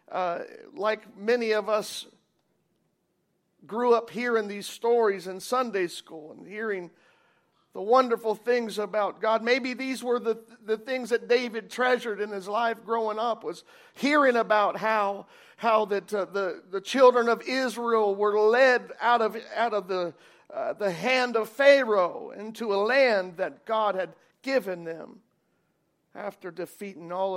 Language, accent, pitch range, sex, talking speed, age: English, American, 205-250 Hz, male, 150 wpm, 50-69